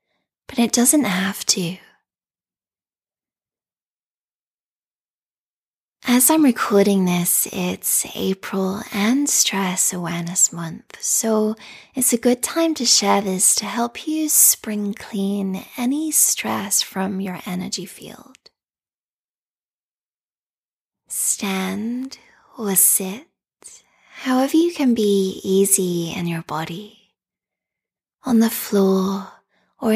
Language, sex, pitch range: English, female, 190-245 Hz